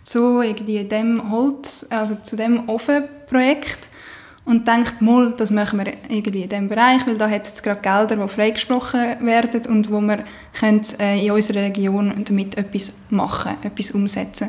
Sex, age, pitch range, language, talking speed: female, 10-29, 210-255 Hz, German, 155 wpm